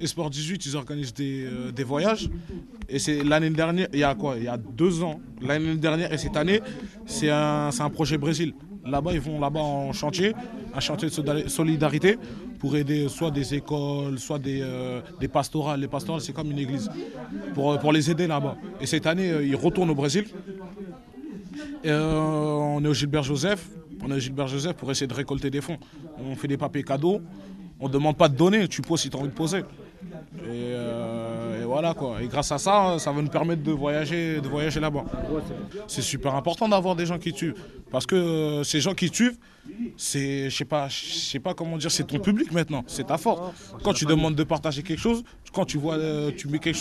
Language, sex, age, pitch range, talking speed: French, male, 20-39, 140-175 Hz, 210 wpm